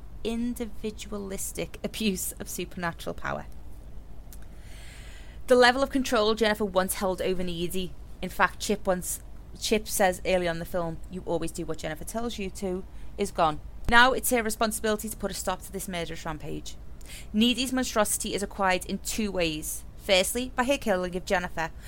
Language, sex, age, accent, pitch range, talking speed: English, female, 30-49, British, 180-230 Hz, 160 wpm